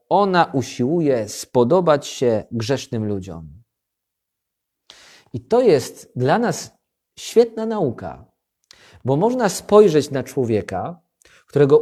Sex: male